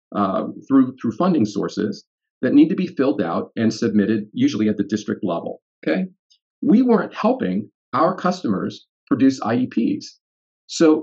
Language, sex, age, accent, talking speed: English, male, 40-59, American, 145 wpm